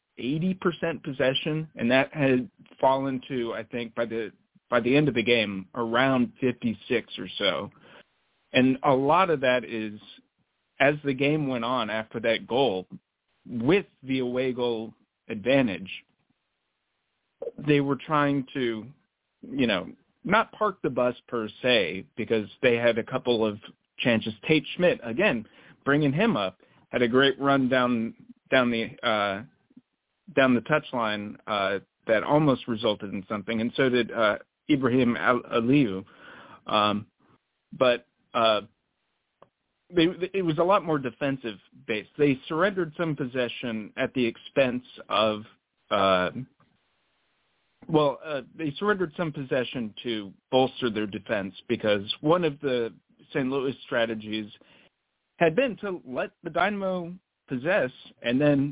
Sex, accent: male, American